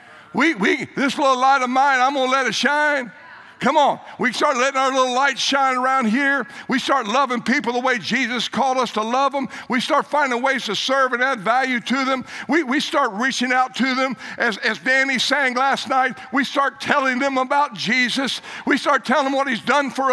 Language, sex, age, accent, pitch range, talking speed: English, male, 60-79, American, 220-280 Hz, 220 wpm